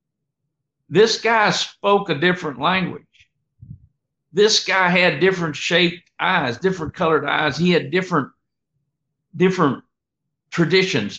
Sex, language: male, English